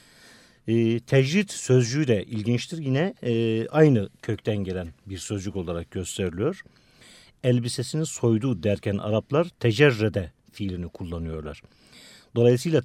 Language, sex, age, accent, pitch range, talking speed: Turkish, male, 50-69, native, 100-130 Hz, 105 wpm